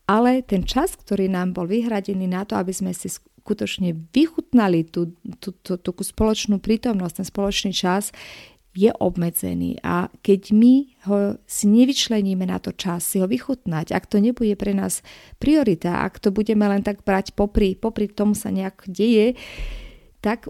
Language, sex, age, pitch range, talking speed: Slovak, female, 30-49, 185-220 Hz, 165 wpm